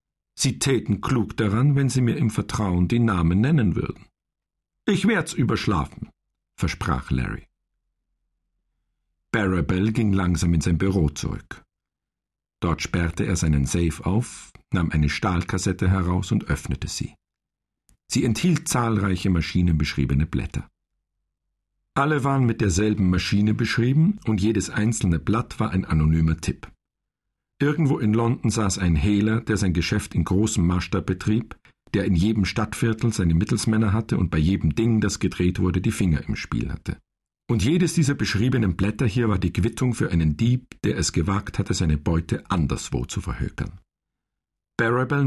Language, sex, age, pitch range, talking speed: German, male, 50-69, 90-120 Hz, 145 wpm